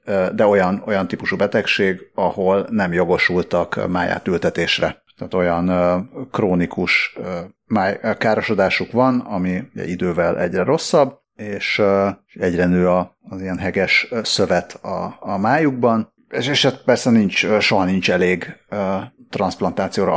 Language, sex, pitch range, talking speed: Hungarian, male, 90-110 Hz, 110 wpm